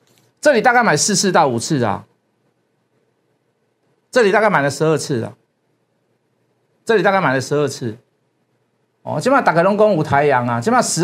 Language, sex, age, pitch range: Chinese, male, 50-69, 140-200 Hz